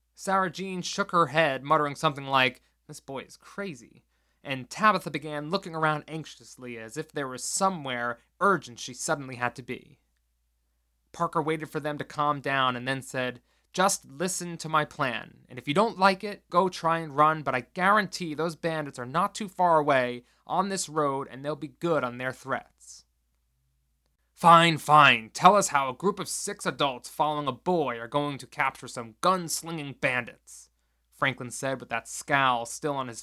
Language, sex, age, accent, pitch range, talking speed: English, male, 20-39, American, 120-165 Hz, 185 wpm